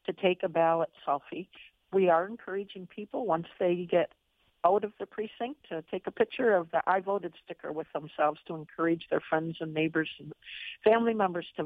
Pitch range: 160-190 Hz